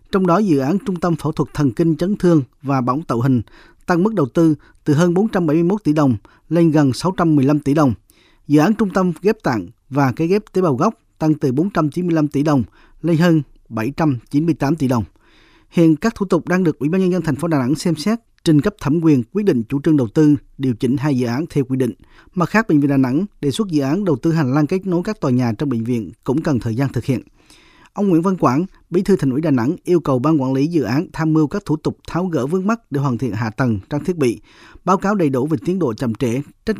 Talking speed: 260 wpm